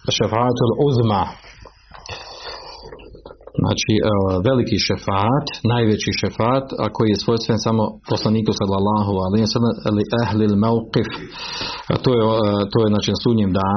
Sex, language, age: male, Croatian, 40-59